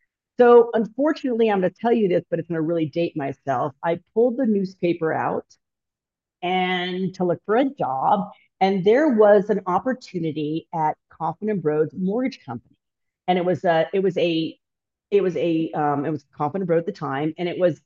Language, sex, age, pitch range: English, female, 40-59, 165-200 Hz